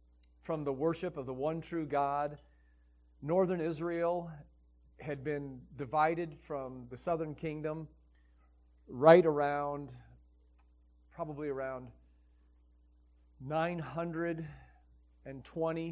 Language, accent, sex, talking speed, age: English, American, male, 85 wpm, 40-59